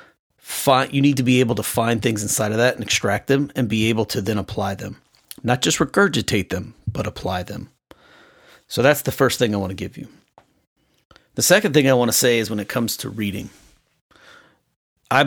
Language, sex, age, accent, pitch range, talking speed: English, male, 40-59, American, 105-125 Hz, 210 wpm